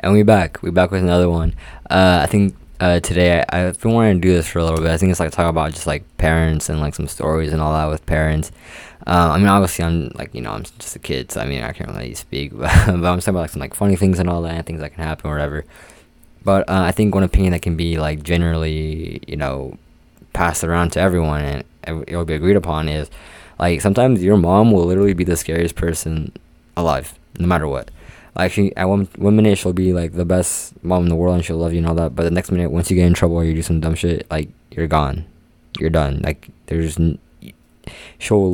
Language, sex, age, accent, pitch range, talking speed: English, male, 20-39, American, 80-95 Hz, 260 wpm